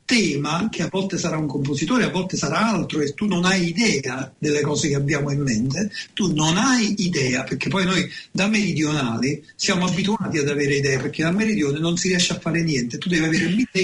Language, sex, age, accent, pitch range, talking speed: Italian, male, 50-69, native, 160-220 Hz, 215 wpm